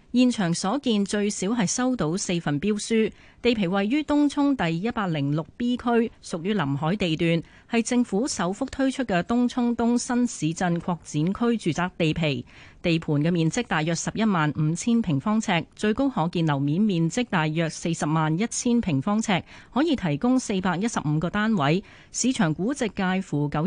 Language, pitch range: Chinese, 160-220 Hz